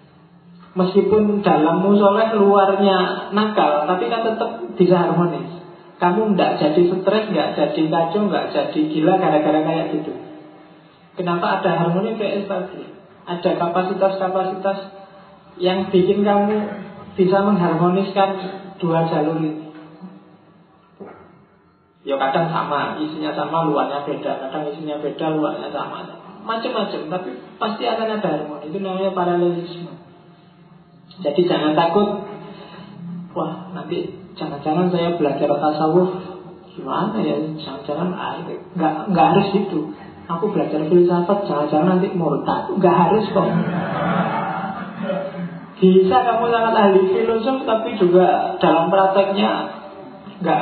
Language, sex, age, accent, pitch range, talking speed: Indonesian, male, 50-69, native, 160-195 Hz, 115 wpm